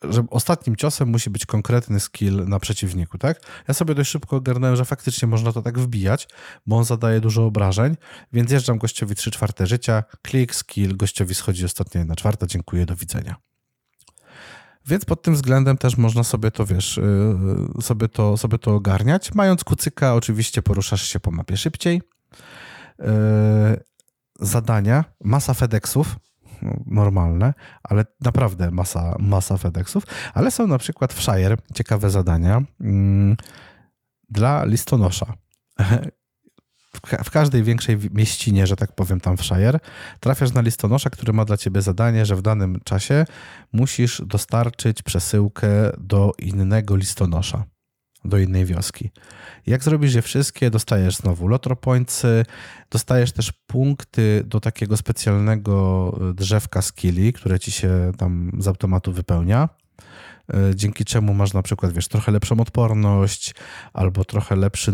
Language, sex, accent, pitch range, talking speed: Polish, male, native, 100-120 Hz, 140 wpm